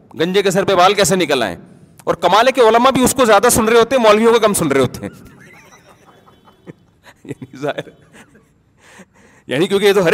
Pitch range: 135-195 Hz